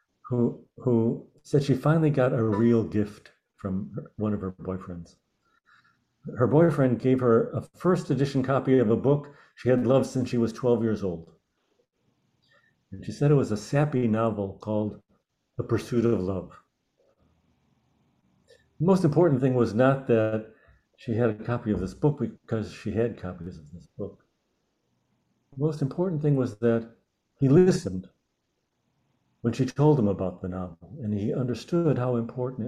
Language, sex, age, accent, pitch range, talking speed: English, male, 60-79, American, 105-140 Hz, 160 wpm